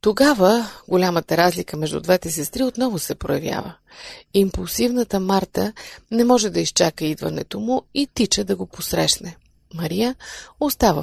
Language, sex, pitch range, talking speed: Bulgarian, female, 175-235 Hz, 130 wpm